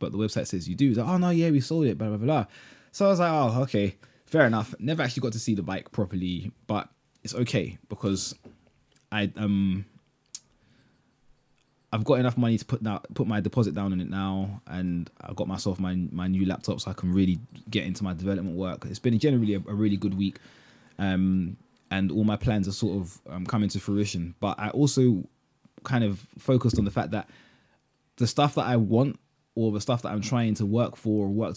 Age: 20-39